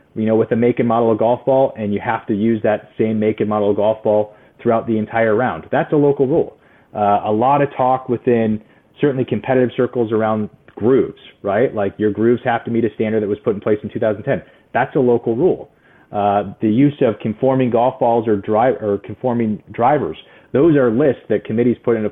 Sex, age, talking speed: male, 30-49, 220 wpm